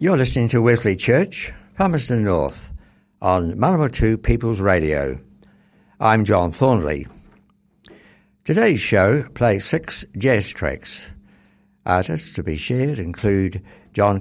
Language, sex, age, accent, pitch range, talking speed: English, male, 60-79, British, 90-130 Hz, 115 wpm